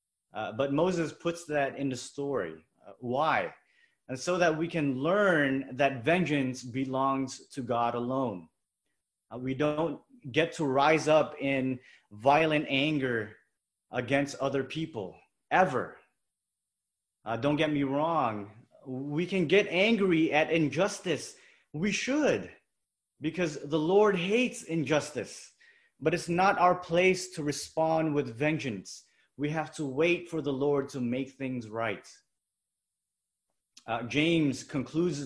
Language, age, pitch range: English, 30-49, 125-160 Hz